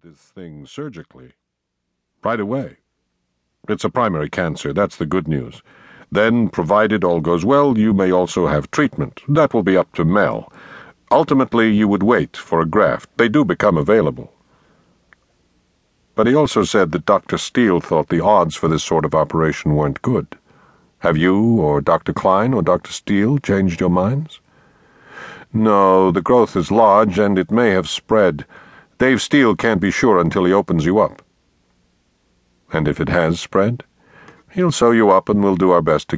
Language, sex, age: English, male, 60-79